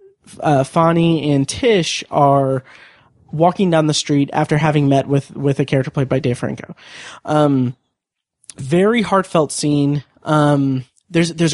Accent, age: American, 30-49